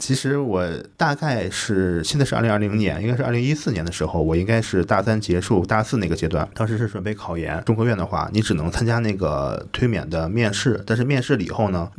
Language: Chinese